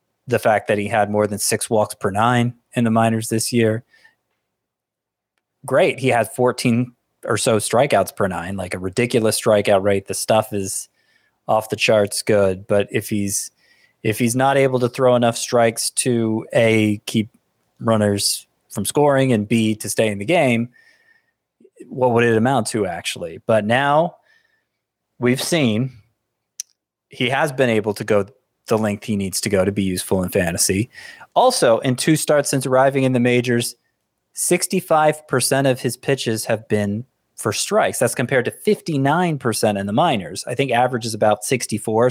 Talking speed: 170 wpm